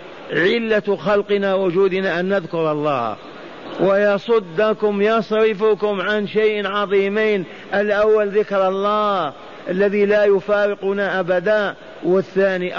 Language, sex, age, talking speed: Arabic, male, 50-69, 90 wpm